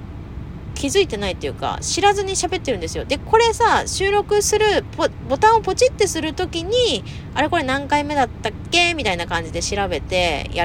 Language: Japanese